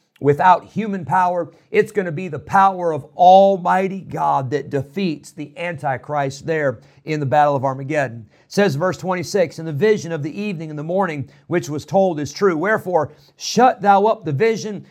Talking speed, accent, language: 185 wpm, American, English